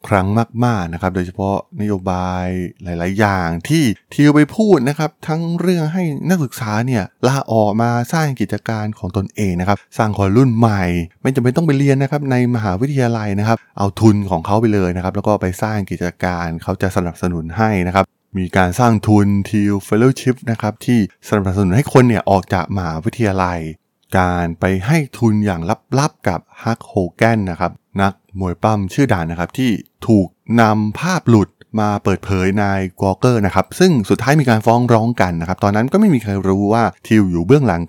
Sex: male